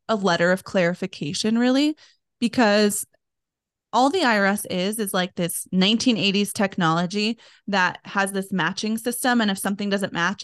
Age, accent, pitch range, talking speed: 20-39, American, 185-230 Hz, 145 wpm